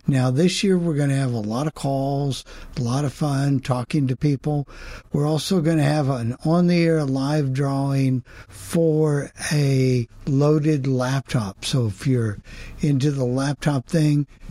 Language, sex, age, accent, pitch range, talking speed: English, male, 60-79, American, 115-145 Hz, 155 wpm